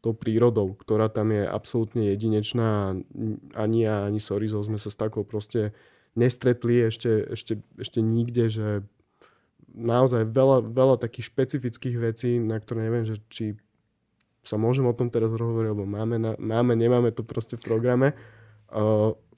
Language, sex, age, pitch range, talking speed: Slovak, male, 20-39, 105-120 Hz, 150 wpm